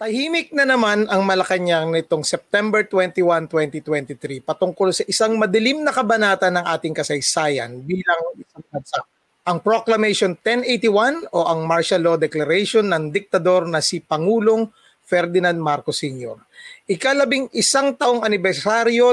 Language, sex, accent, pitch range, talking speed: Filipino, male, native, 165-230 Hz, 120 wpm